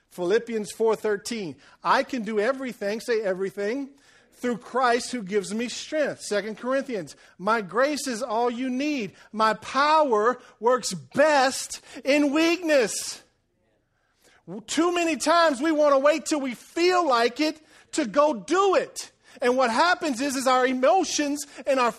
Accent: American